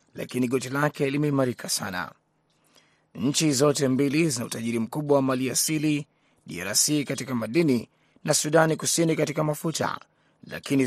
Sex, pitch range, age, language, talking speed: male, 135-160 Hz, 30-49, Swahili, 125 wpm